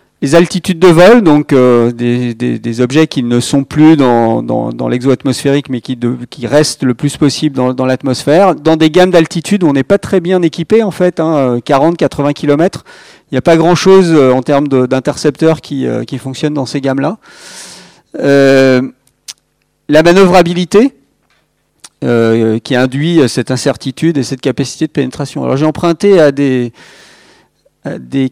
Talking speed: 170 wpm